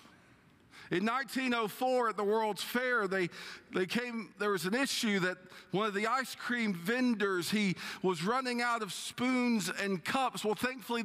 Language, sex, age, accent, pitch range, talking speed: English, male, 50-69, American, 155-235 Hz, 165 wpm